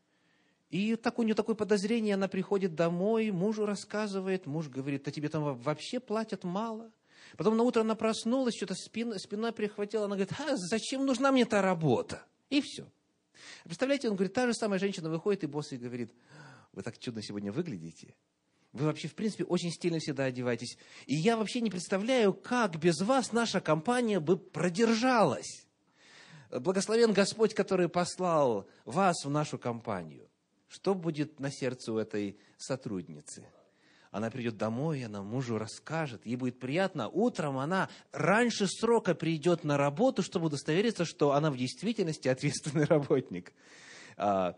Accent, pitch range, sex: native, 135-215 Hz, male